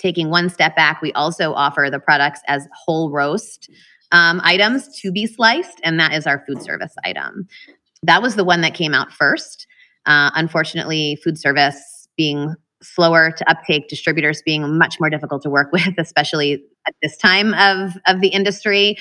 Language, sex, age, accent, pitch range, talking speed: English, female, 20-39, American, 145-180 Hz, 175 wpm